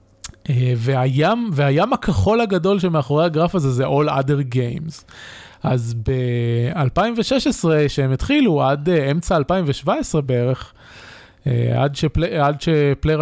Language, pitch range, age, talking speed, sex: Hebrew, 125-160 Hz, 20-39, 110 wpm, male